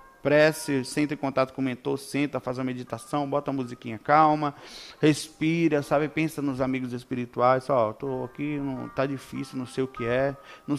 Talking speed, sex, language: 190 wpm, male, Portuguese